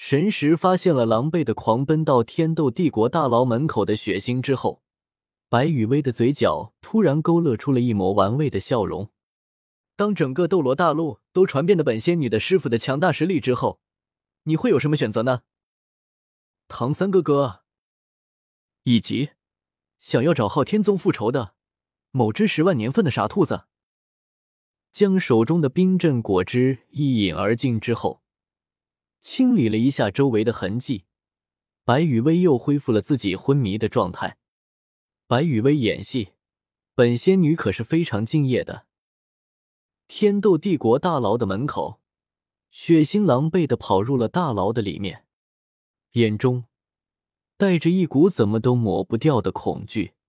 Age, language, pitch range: 20-39, Chinese, 115-165 Hz